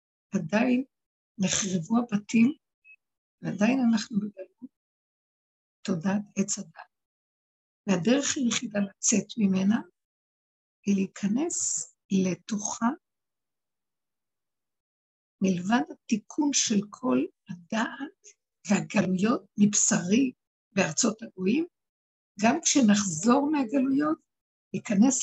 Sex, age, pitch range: female, 60-79, 195-255 Hz